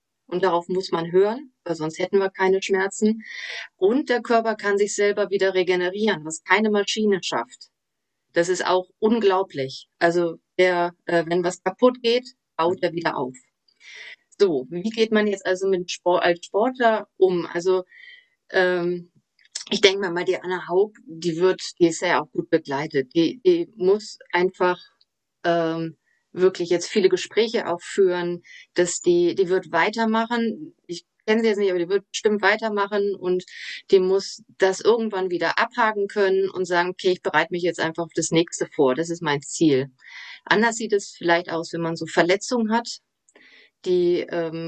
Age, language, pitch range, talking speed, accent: 30-49, German, 175-225 Hz, 165 wpm, German